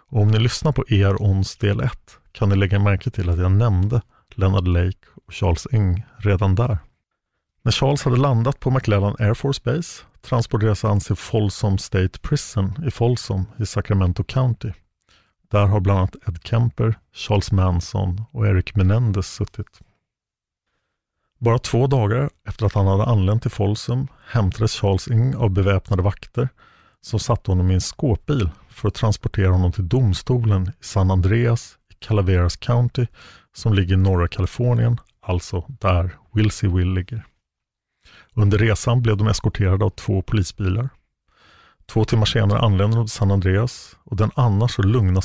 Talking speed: 160 wpm